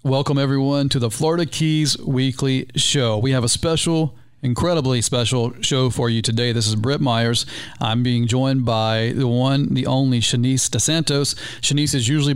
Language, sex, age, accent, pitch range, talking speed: English, male, 40-59, American, 120-140 Hz, 170 wpm